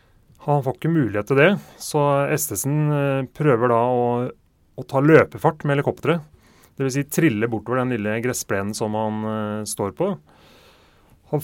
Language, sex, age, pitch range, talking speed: English, male, 30-49, 110-140 Hz, 165 wpm